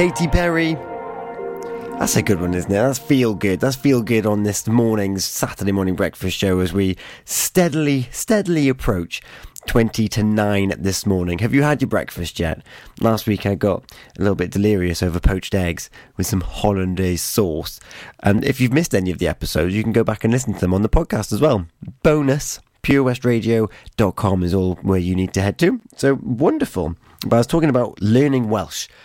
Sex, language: male, English